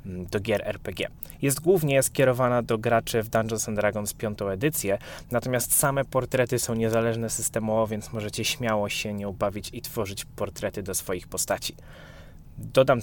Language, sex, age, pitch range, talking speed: Polish, male, 20-39, 105-125 Hz, 150 wpm